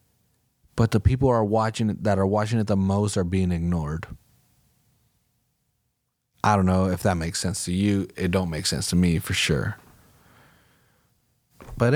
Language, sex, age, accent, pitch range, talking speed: English, male, 30-49, American, 100-130 Hz, 165 wpm